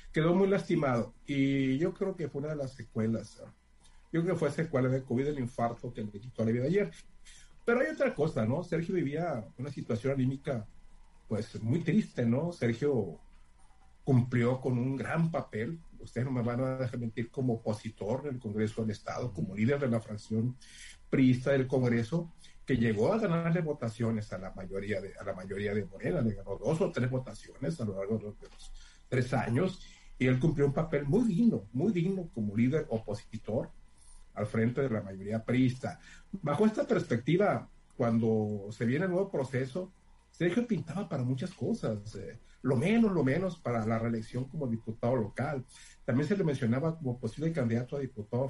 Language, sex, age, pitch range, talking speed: Spanish, male, 50-69, 110-150 Hz, 190 wpm